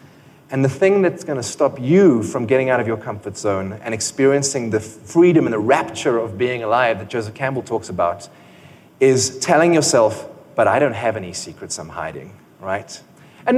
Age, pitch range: 30-49, 120-180 Hz